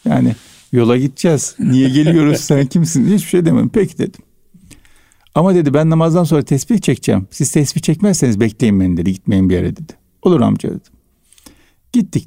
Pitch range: 105-160 Hz